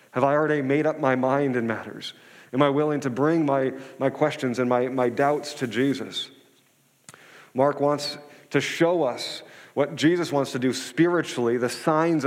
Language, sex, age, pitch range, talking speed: English, male, 40-59, 125-155 Hz, 175 wpm